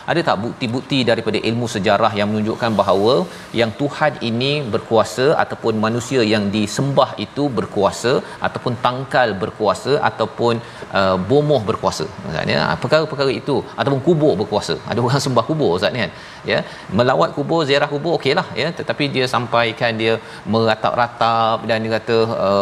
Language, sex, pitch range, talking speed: Malayalam, male, 115-145 Hz, 150 wpm